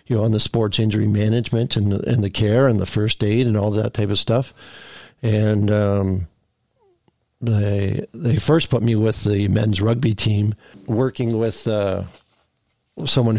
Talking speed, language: 170 wpm, English